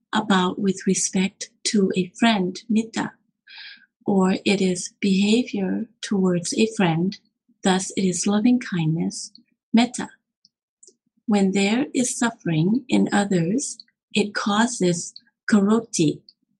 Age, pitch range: 30-49, 200-240 Hz